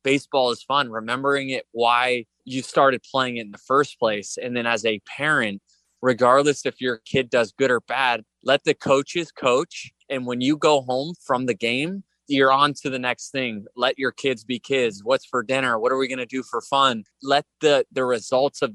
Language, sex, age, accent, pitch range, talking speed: English, male, 20-39, American, 120-145 Hz, 210 wpm